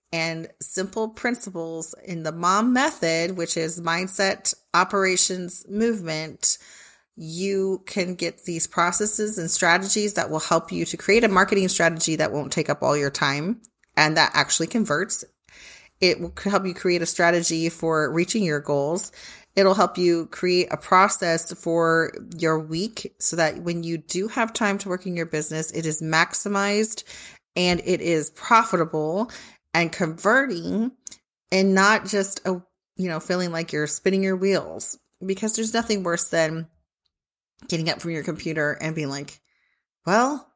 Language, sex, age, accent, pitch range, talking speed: English, female, 30-49, American, 165-205 Hz, 155 wpm